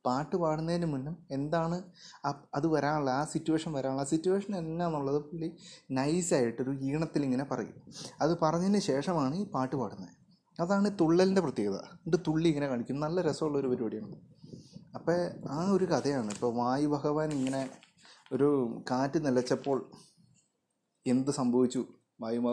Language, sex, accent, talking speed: Malayalam, male, native, 130 wpm